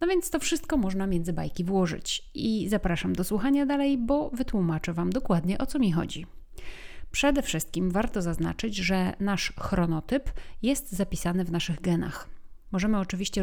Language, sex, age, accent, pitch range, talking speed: Polish, female, 30-49, native, 180-255 Hz, 155 wpm